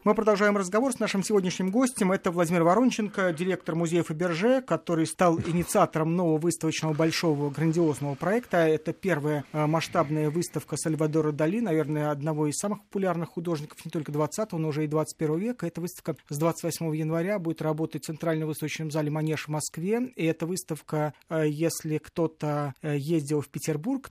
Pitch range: 155-185 Hz